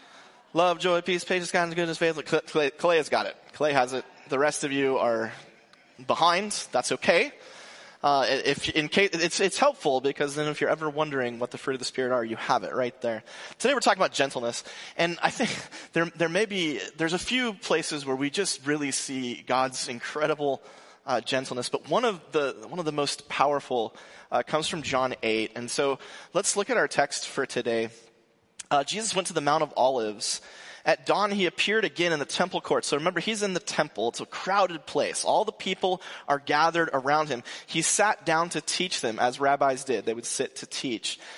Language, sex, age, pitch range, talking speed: English, male, 20-39, 140-180 Hz, 210 wpm